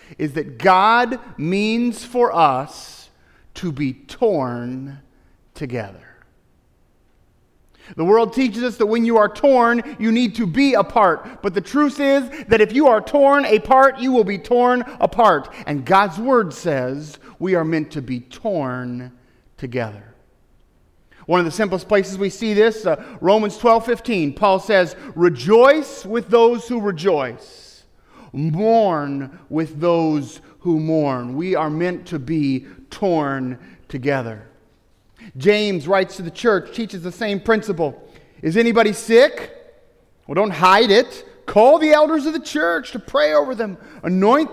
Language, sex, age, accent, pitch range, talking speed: English, male, 40-59, American, 165-250 Hz, 145 wpm